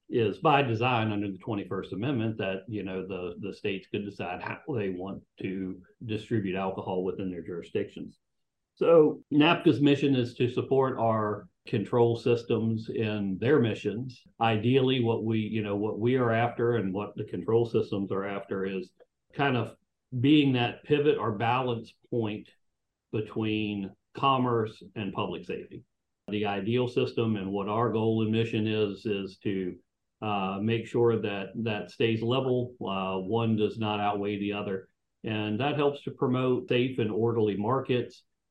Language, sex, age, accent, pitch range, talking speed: English, male, 50-69, American, 100-120 Hz, 155 wpm